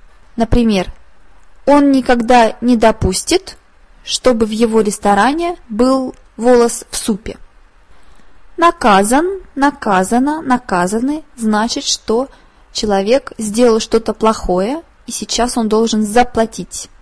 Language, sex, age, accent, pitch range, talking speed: Russian, female, 20-39, native, 210-255 Hz, 95 wpm